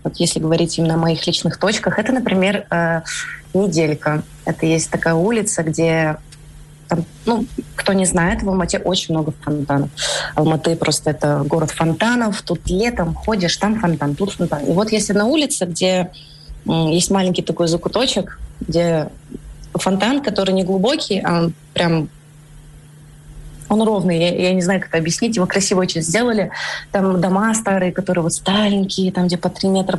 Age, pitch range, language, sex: 20-39, 160-190 Hz, Ukrainian, female